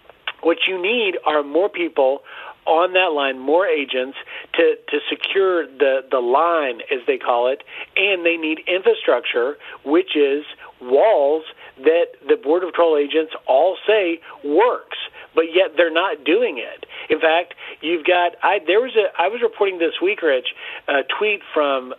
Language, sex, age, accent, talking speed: English, male, 40-59, American, 155 wpm